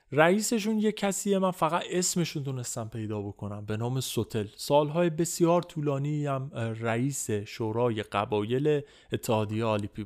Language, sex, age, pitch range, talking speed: Persian, male, 30-49, 115-150 Hz, 125 wpm